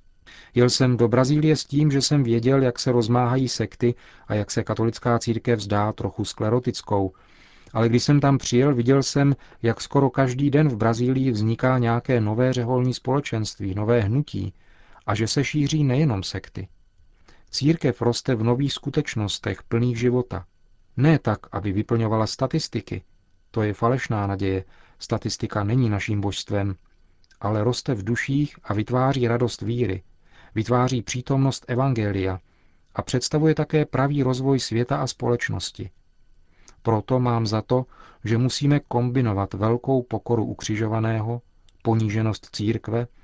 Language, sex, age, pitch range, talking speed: Czech, male, 40-59, 105-130 Hz, 135 wpm